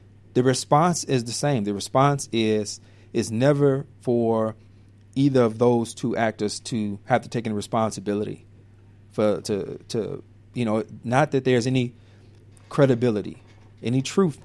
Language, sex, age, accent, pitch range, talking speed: English, male, 40-59, American, 105-125 Hz, 140 wpm